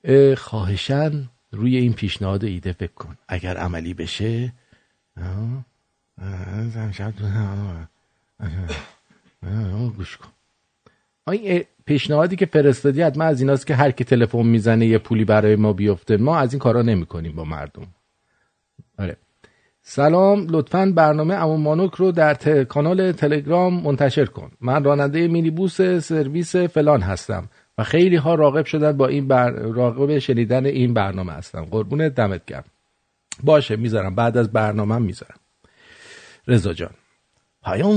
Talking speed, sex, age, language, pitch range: 130 wpm, male, 50-69, English, 110-155 Hz